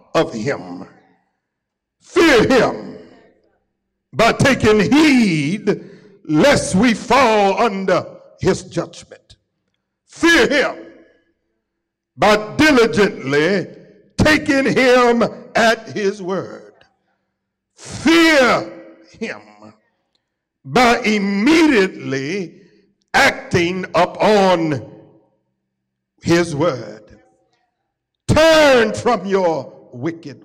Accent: American